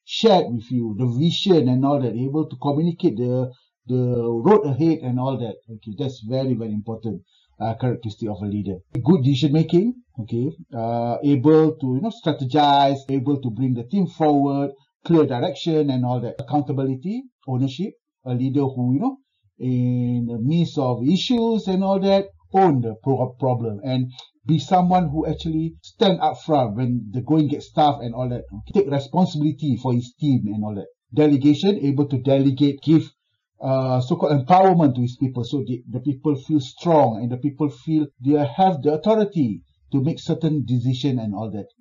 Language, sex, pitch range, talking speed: English, male, 125-160 Hz, 180 wpm